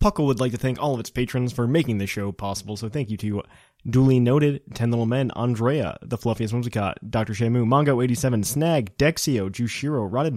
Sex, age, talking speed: male, 20-39, 195 wpm